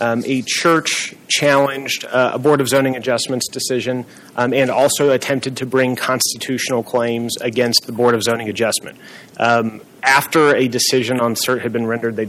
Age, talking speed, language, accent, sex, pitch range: 30-49, 170 wpm, English, American, male, 120-140 Hz